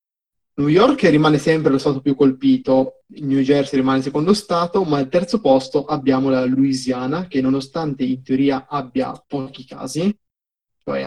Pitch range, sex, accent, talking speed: 135-150 Hz, male, native, 155 wpm